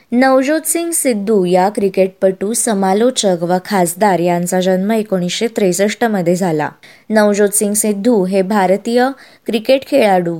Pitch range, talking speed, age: 185-230 Hz, 115 wpm, 20-39